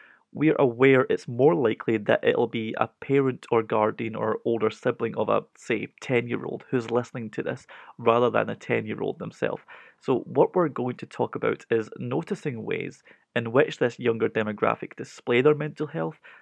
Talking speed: 170 wpm